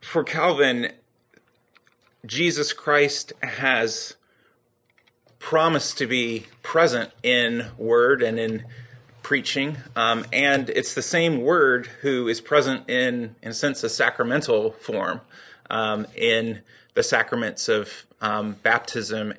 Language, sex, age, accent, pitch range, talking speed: English, male, 30-49, American, 115-165 Hz, 115 wpm